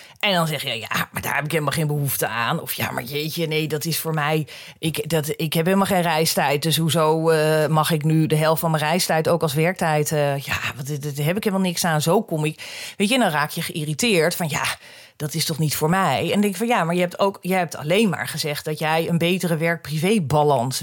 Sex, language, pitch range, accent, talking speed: female, Dutch, 150-210 Hz, Dutch, 260 wpm